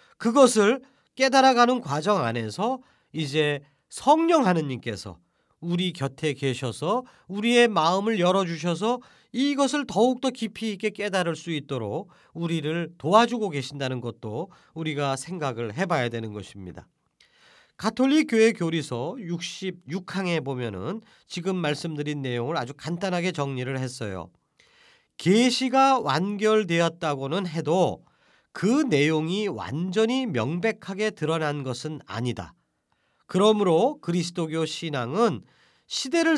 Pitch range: 140-230 Hz